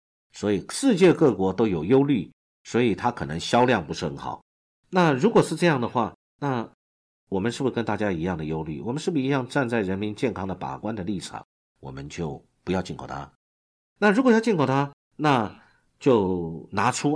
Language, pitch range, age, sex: Chinese, 90-145 Hz, 50-69, male